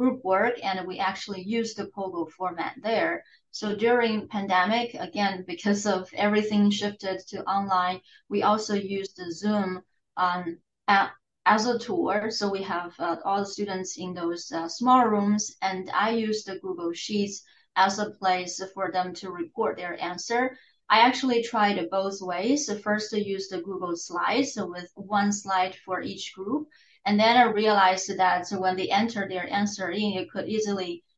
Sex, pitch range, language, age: female, 185-220 Hz, English, 30-49